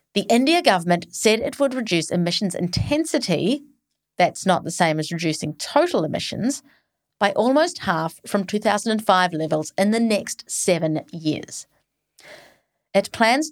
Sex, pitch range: female, 165-240 Hz